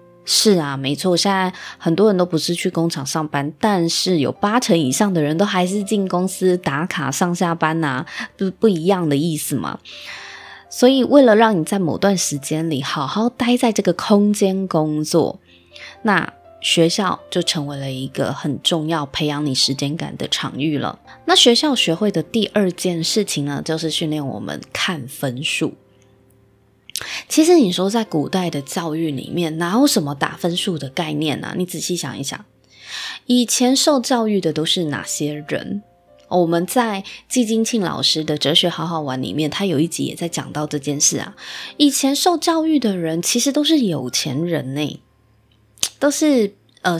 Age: 20-39